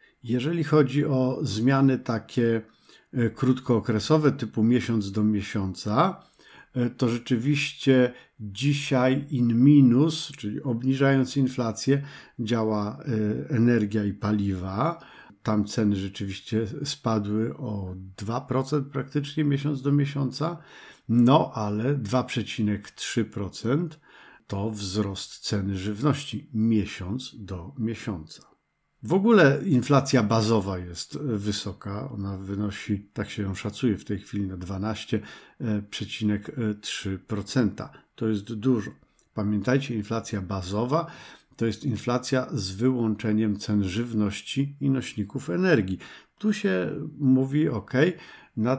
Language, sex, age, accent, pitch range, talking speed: Polish, male, 50-69, native, 105-135 Hz, 100 wpm